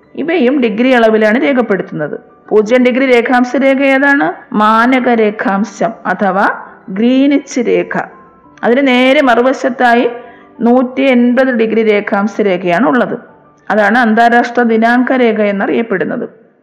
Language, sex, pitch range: Malayalam, female, 215-255 Hz